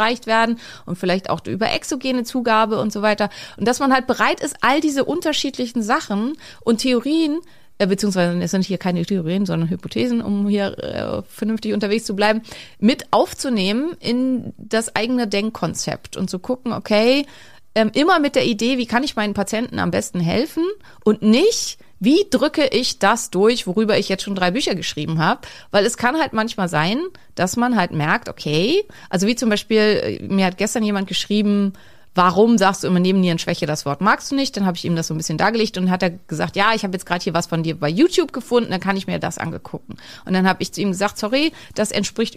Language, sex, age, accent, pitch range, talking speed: German, female, 30-49, German, 190-245 Hz, 210 wpm